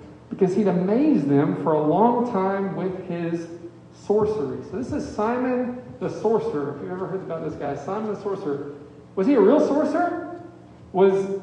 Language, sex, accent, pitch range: English, male, American, 175-220 Hz